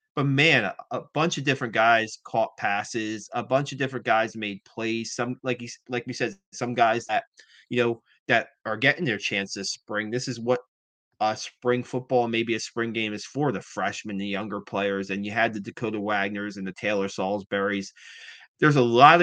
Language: English